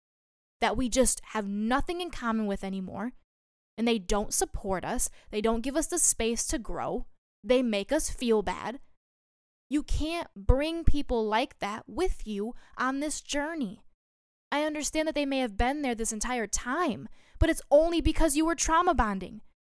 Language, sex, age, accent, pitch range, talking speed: English, female, 10-29, American, 210-280 Hz, 175 wpm